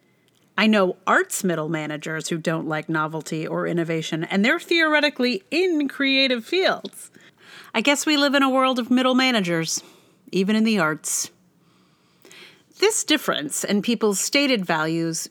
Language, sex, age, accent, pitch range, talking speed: English, female, 40-59, American, 170-260 Hz, 145 wpm